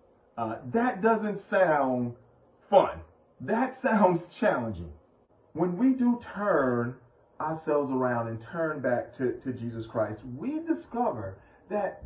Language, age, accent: English, 40-59, American